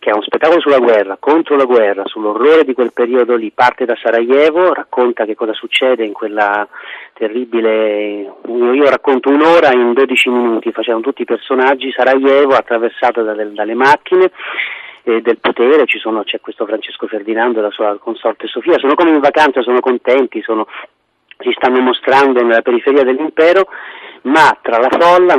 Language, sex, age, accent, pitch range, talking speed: Italian, male, 40-59, native, 115-145 Hz, 165 wpm